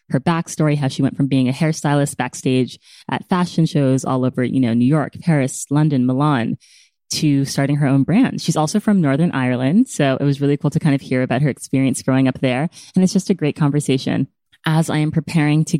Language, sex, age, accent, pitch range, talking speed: English, female, 20-39, American, 135-165 Hz, 220 wpm